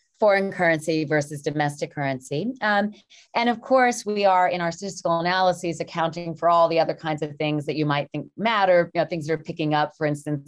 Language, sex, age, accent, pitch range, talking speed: English, female, 30-49, American, 150-195 Hz, 210 wpm